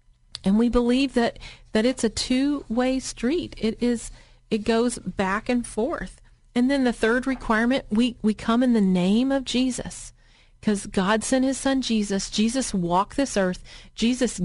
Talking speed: 170 wpm